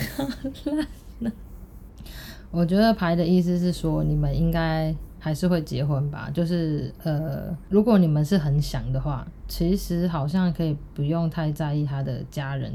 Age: 20-39